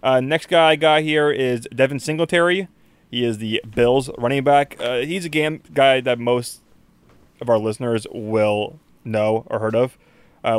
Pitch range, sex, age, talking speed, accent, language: 110-140 Hz, male, 20-39, 175 wpm, American, English